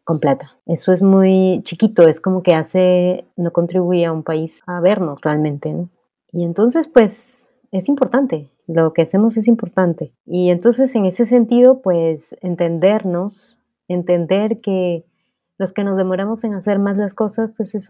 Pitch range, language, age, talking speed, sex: 170-220 Hz, Spanish, 30-49, 165 wpm, female